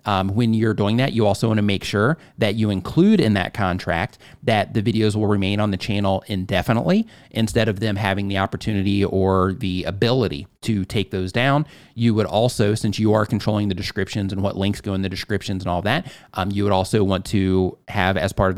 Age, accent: 30-49, American